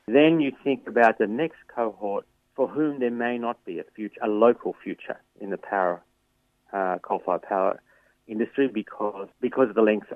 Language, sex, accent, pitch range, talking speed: English, male, Australian, 100-120 Hz, 185 wpm